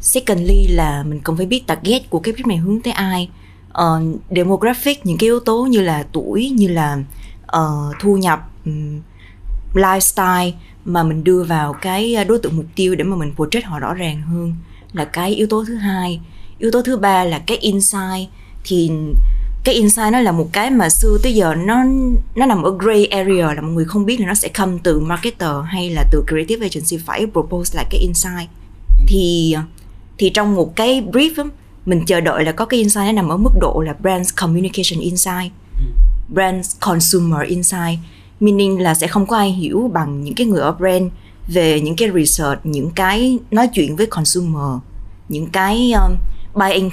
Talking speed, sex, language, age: 190 wpm, female, Vietnamese, 20-39